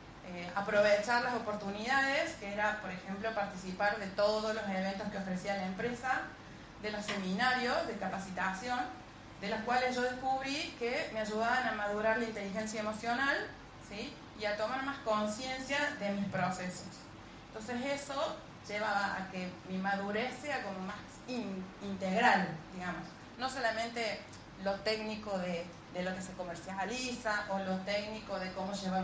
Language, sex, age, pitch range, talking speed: Spanish, female, 30-49, 190-230 Hz, 150 wpm